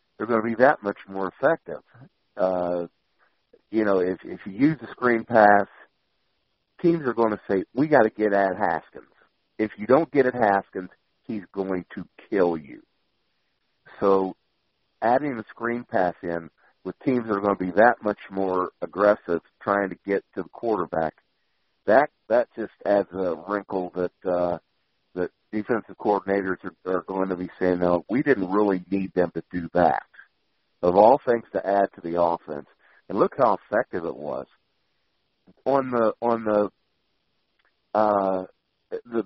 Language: English